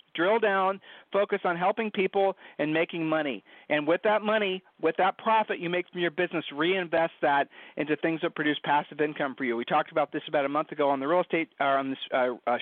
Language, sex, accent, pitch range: English, male, American, 150-185 Hz